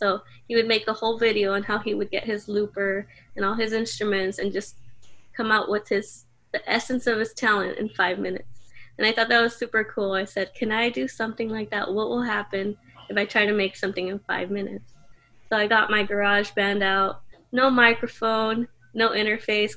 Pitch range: 195-225 Hz